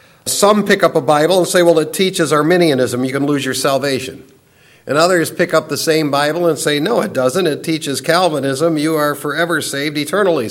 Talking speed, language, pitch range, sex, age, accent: 205 wpm, English, 155-195 Hz, male, 50-69, American